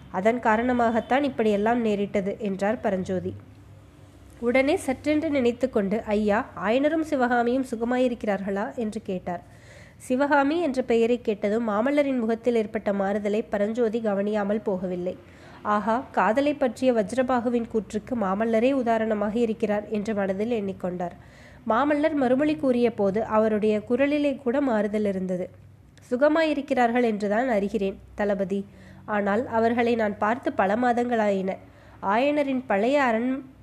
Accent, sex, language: native, female, Tamil